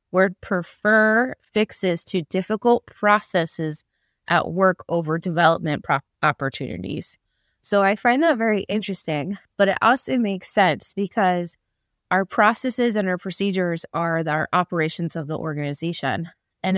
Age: 20-39